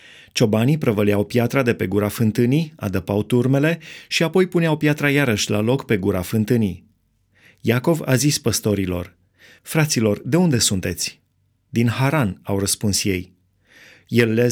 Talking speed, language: 140 wpm, Romanian